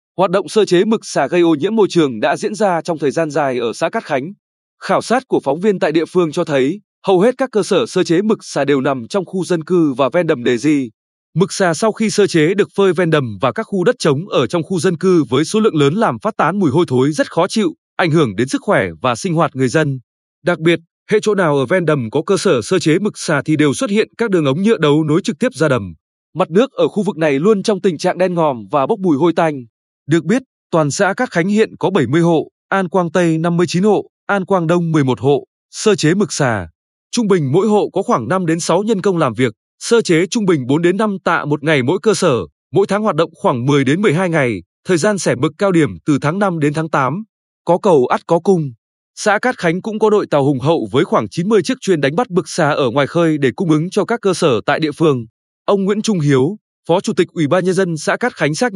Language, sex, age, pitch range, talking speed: Vietnamese, male, 20-39, 150-200 Hz, 270 wpm